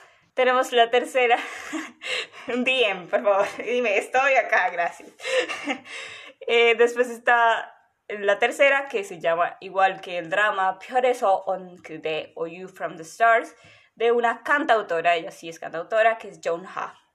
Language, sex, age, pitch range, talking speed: Spanish, female, 20-39, 185-240 Hz, 145 wpm